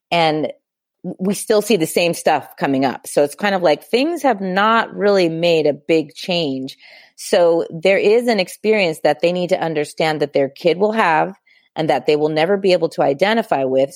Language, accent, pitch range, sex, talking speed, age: English, American, 145-195 Hz, female, 200 wpm, 30-49